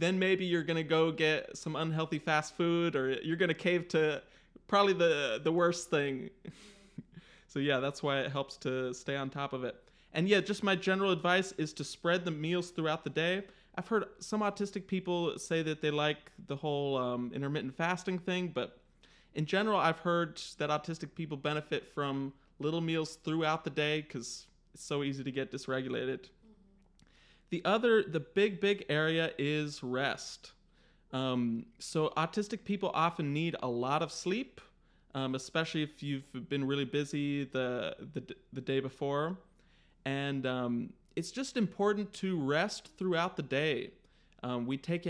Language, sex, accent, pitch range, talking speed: English, male, American, 145-185 Hz, 170 wpm